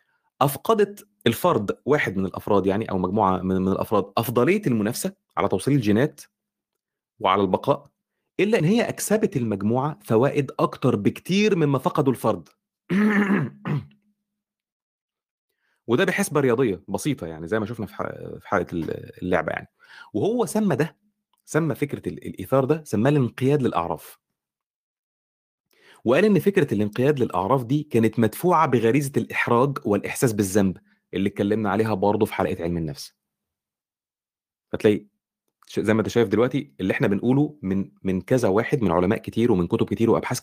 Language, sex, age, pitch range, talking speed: Arabic, male, 30-49, 105-155 Hz, 130 wpm